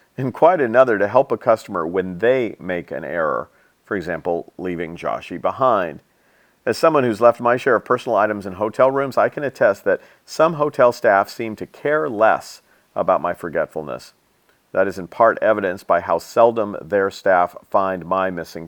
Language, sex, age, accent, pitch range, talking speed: English, male, 50-69, American, 95-135 Hz, 180 wpm